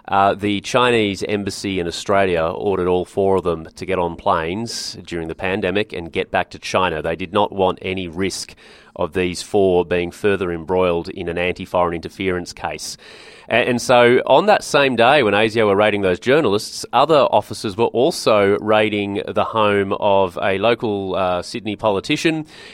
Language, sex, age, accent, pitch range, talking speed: English, male, 30-49, Australian, 95-110 Hz, 175 wpm